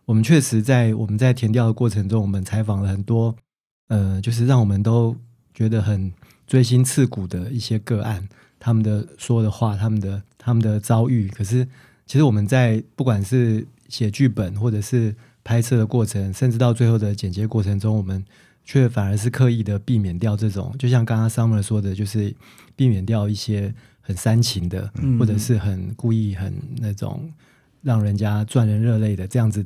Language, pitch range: Chinese, 105-120 Hz